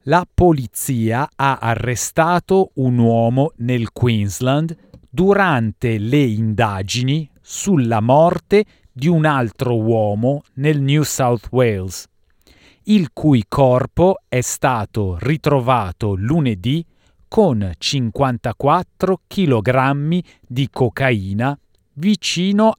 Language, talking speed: Italian, 90 wpm